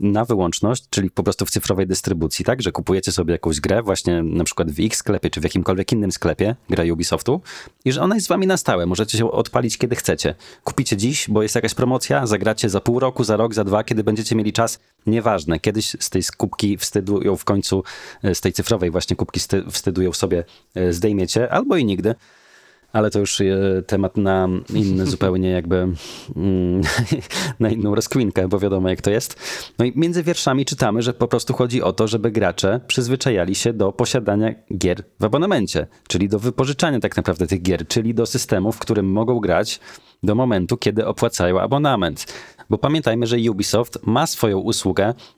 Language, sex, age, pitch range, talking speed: Polish, male, 30-49, 95-115 Hz, 185 wpm